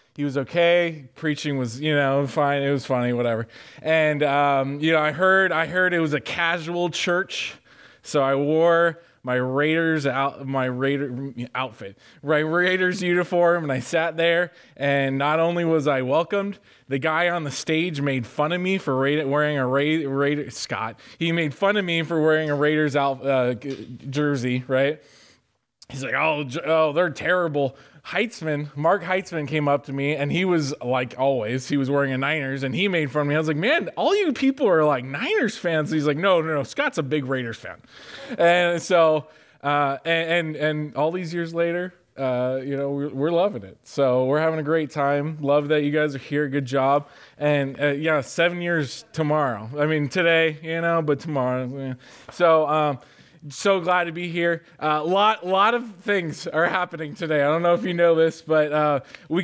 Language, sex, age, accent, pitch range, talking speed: English, male, 20-39, American, 140-170 Hz, 200 wpm